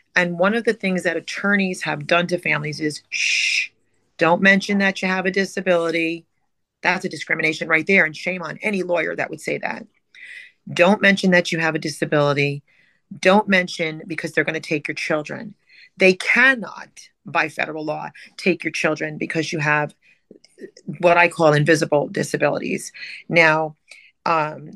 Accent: American